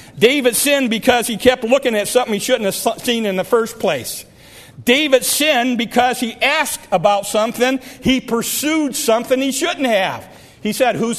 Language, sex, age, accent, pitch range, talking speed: English, male, 50-69, American, 225-265 Hz, 170 wpm